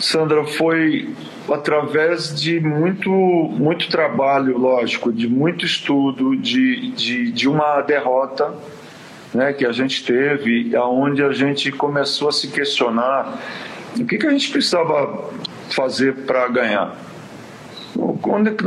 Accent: Brazilian